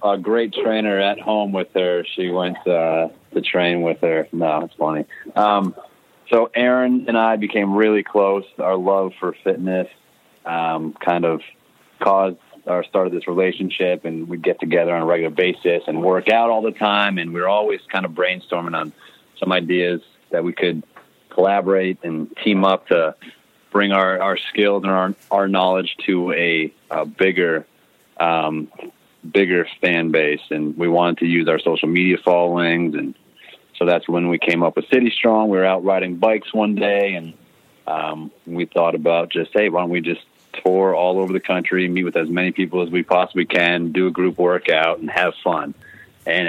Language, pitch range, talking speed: English, 85-100 Hz, 185 wpm